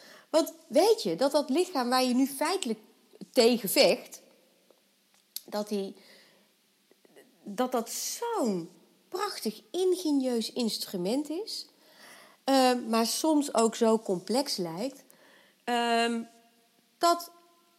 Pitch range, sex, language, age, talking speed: 210-300 Hz, female, Dutch, 30-49, 100 wpm